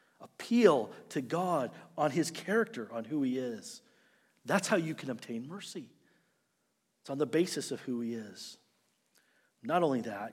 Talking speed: 155 wpm